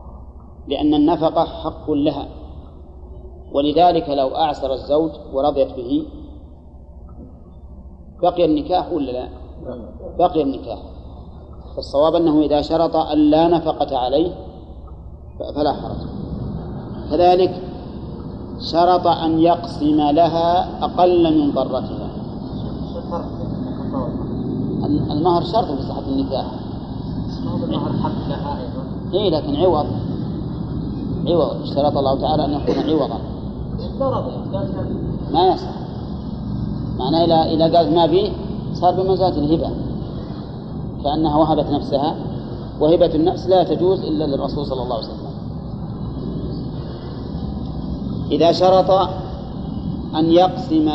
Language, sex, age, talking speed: Arabic, male, 40-59, 95 wpm